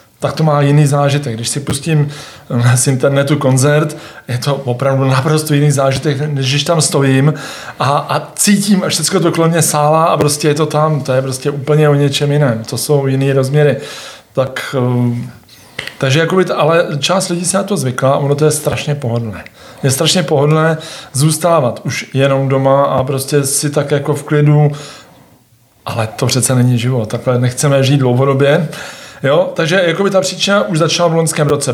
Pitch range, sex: 135-155 Hz, male